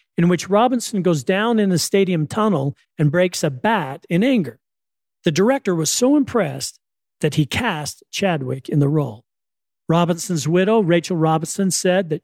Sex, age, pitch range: male, 40-59, 145-185 Hz